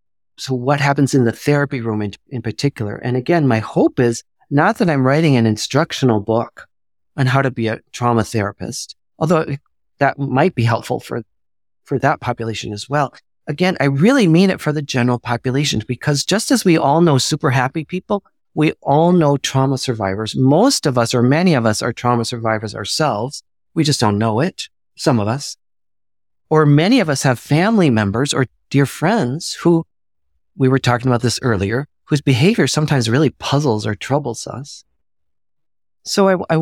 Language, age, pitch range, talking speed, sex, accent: English, 40-59, 115-155 Hz, 180 wpm, male, American